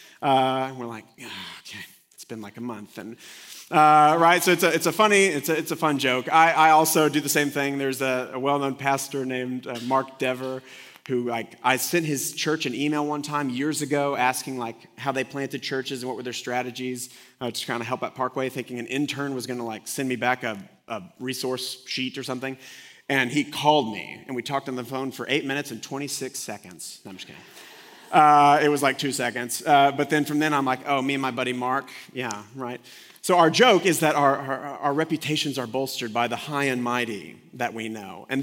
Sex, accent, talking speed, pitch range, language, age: male, American, 230 wpm, 125-150 Hz, English, 30-49